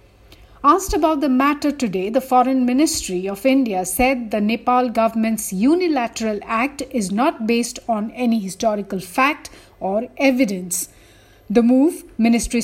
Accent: Indian